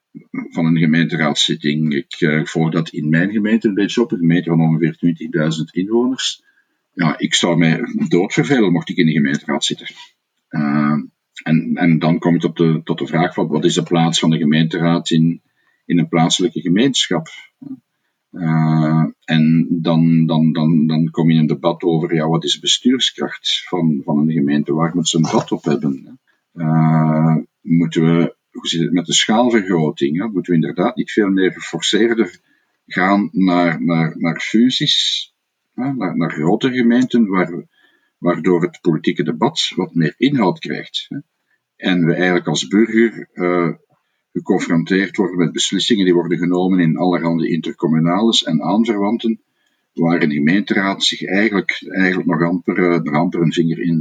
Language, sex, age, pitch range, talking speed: Dutch, male, 50-69, 80-90 Hz, 155 wpm